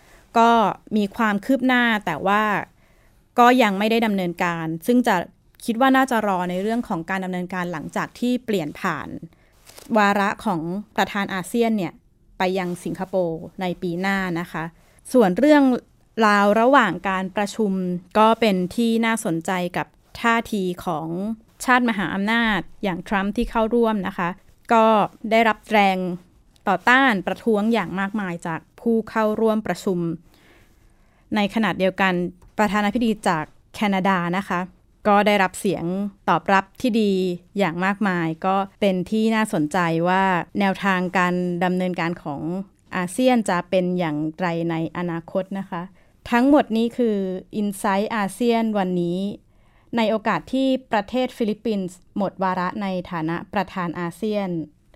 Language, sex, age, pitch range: Thai, female, 20-39, 180-220 Hz